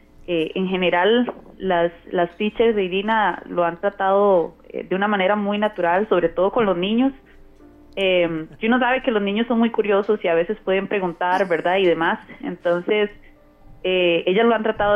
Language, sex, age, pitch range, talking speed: Spanish, female, 20-39, 185-230 Hz, 180 wpm